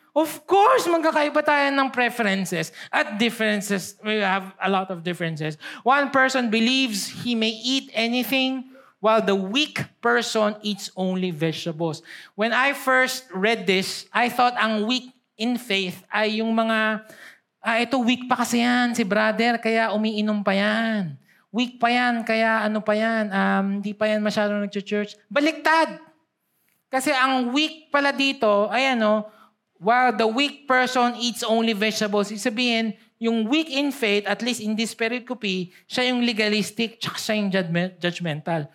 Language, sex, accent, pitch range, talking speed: Filipino, male, native, 205-245 Hz, 155 wpm